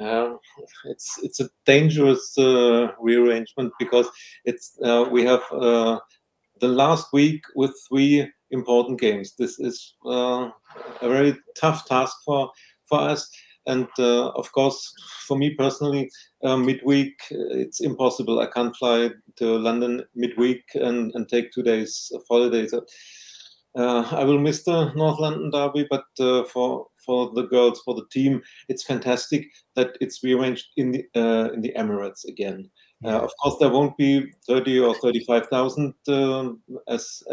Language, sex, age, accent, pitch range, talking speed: English, male, 40-59, German, 120-140 Hz, 150 wpm